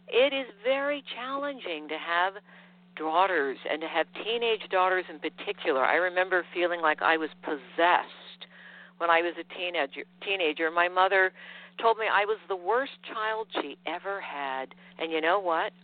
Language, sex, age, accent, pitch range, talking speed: English, female, 60-79, American, 160-215 Hz, 160 wpm